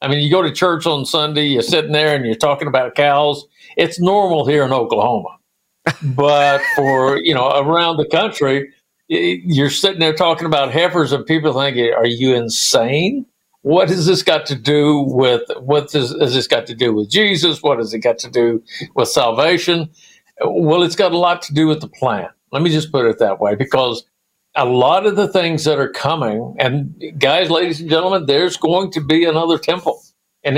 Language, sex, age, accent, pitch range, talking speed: English, male, 60-79, American, 140-170 Hz, 200 wpm